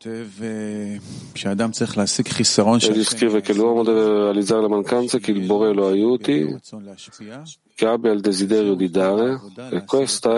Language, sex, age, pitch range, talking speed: Italian, male, 40-59, 100-125 Hz, 120 wpm